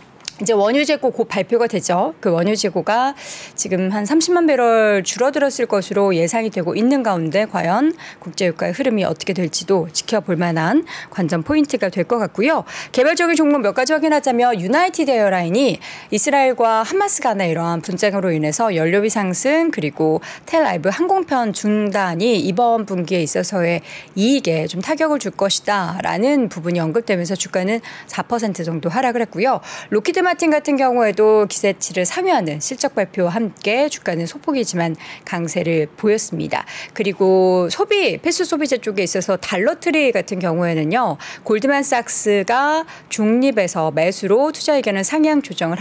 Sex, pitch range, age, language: female, 180-265 Hz, 40-59, Korean